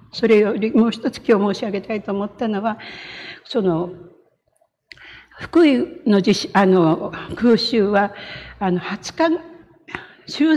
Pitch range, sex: 175-235 Hz, female